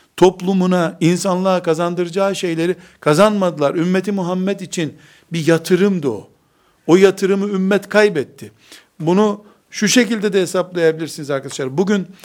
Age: 60-79